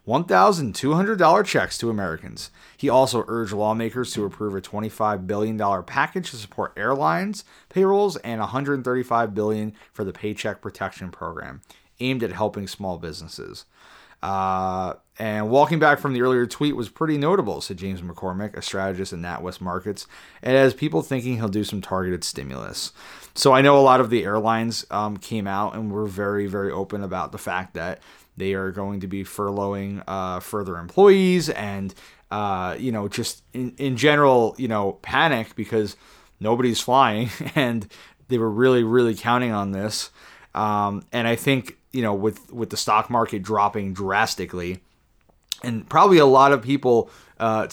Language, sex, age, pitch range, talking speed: English, male, 30-49, 100-125 Hz, 165 wpm